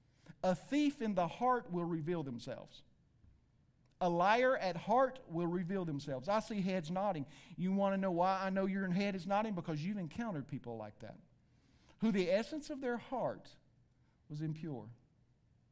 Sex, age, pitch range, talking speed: male, 50-69, 155-245 Hz, 170 wpm